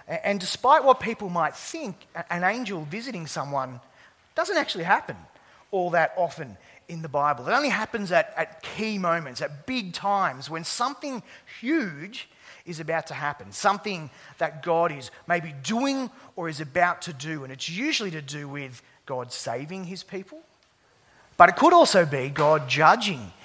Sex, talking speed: male, 165 wpm